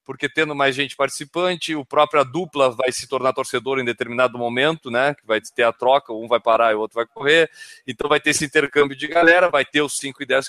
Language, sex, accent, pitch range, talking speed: Portuguese, male, Brazilian, 140-180 Hz, 245 wpm